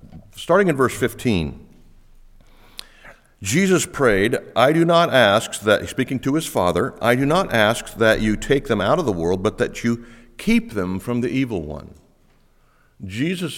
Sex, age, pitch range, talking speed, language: male, 50-69, 100-150 Hz, 165 wpm, English